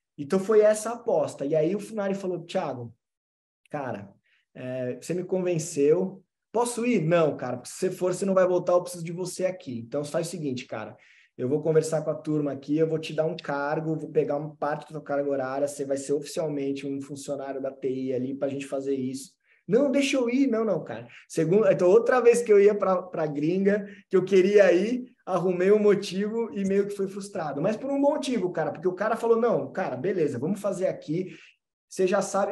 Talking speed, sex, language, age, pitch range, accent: 220 wpm, male, Portuguese, 20-39, 145-195 Hz, Brazilian